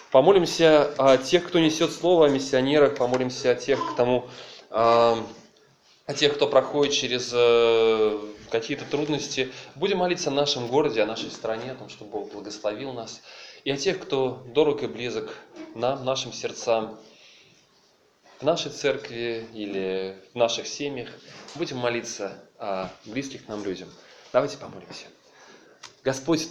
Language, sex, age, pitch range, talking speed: Russian, male, 20-39, 115-145 Hz, 140 wpm